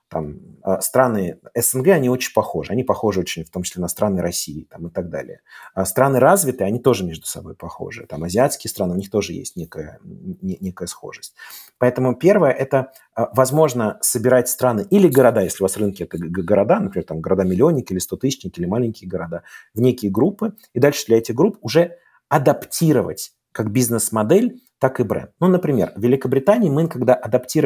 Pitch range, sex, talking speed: 105-140 Hz, male, 165 wpm